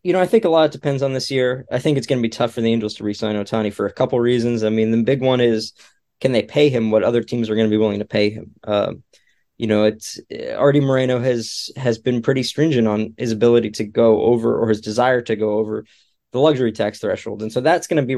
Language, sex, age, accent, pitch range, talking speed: English, male, 20-39, American, 115-130 Hz, 275 wpm